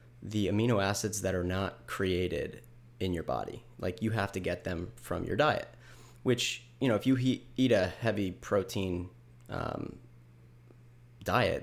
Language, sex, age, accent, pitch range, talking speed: English, male, 20-39, American, 95-120 Hz, 155 wpm